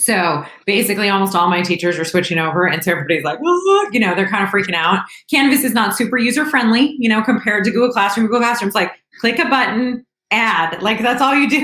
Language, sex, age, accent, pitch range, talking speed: English, female, 30-49, American, 175-215 Hz, 225 wpm